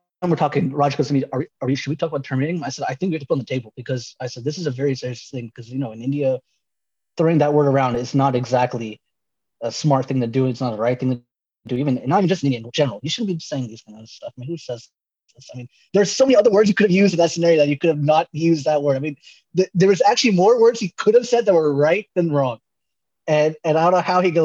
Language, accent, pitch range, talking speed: English, American, 130-155 Hz, 310 wpm